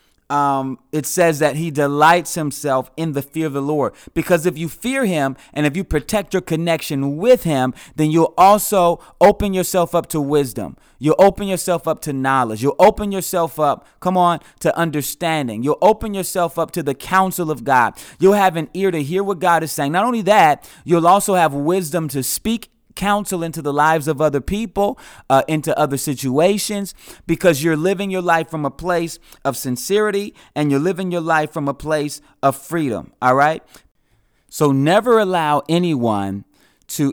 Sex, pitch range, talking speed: male, 140-180 Hz, 185 wpm